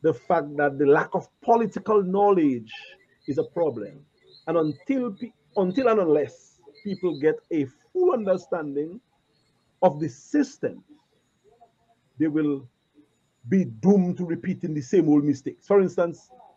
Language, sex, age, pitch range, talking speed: English, male, 50-69, 145-210 Hz, 135 wpm